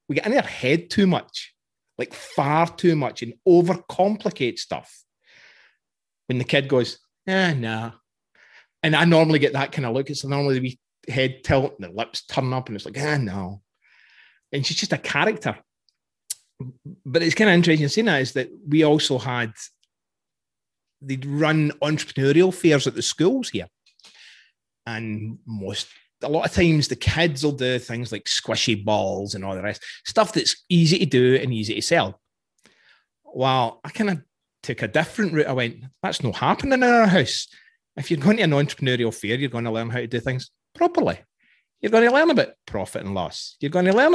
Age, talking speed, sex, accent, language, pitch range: 30-49, 195 wpm, male, British, English, 115-165 Hz